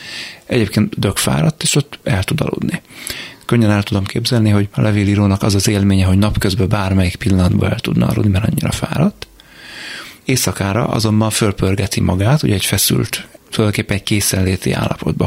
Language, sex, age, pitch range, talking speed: Hungarian, male, 30-49, 95-115 Hz, 155 wpm